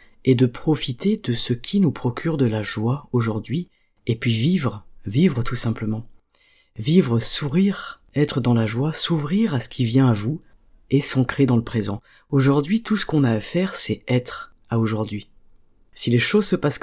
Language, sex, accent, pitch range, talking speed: French, female, French, 120-150 Hz, 185 wpm